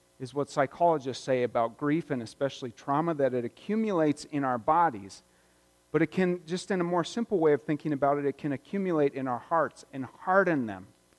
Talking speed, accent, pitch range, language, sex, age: 200 wpm, American, 125-185 Hz, English, male, 40-59